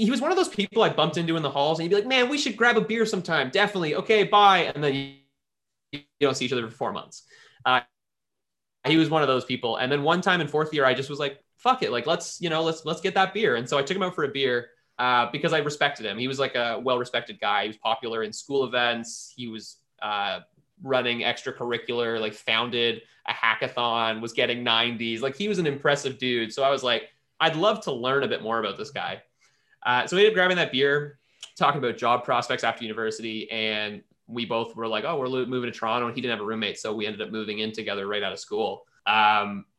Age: 20-39